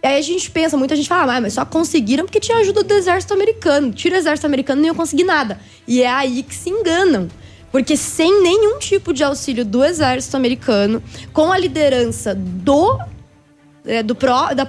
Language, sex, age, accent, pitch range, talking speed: Portuguese, female, 20-39, Brazilian, 240-315 Hz, 205 wpm